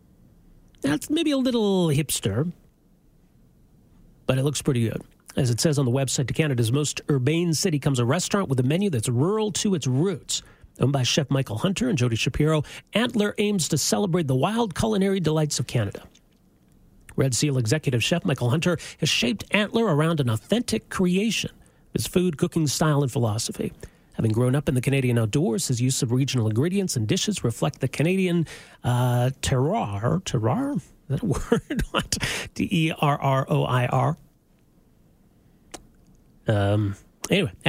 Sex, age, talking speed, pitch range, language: male, 40-59, 155 wpm, 125-175 Hz, English